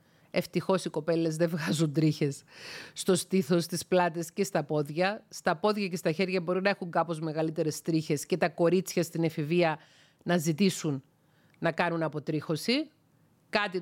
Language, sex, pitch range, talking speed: Greek, female, 155-195 Hz, 150 wpm